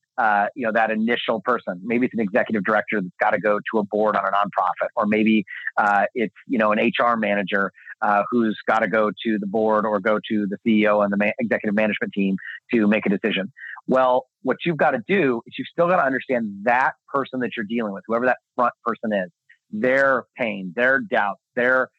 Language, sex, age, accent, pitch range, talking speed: English, male, 40-59, American, 110-135 Hz, 220 wpm